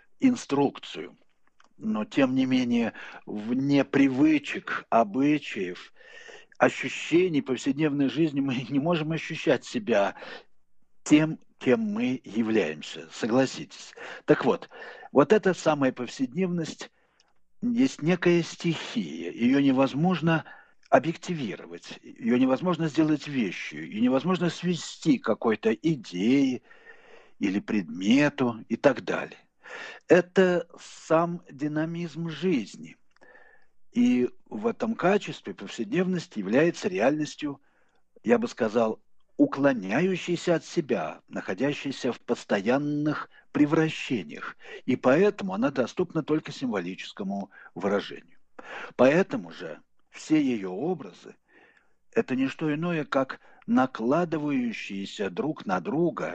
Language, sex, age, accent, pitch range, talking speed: Russian, male, 60-79, native, 135-215 Hz, 95 wpm